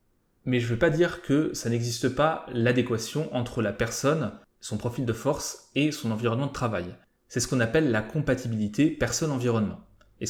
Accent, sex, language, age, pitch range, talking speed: French, male, French, 20-39, 115-140 Hz, 180 wpm